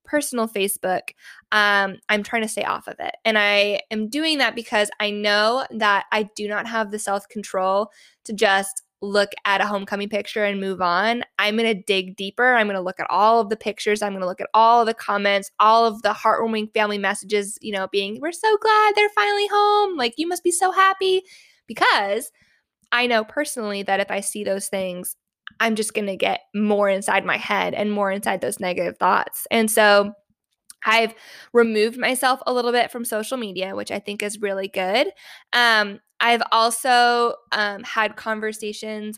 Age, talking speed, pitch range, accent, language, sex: 20-39, 195 wpm, 205-240 Hz, American, English, female